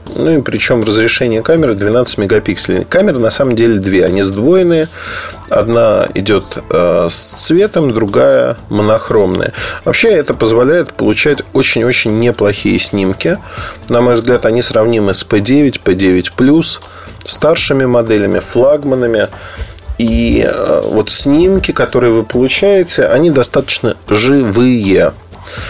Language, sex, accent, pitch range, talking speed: Russian, male, native, 105-135 Hz, 110 wpm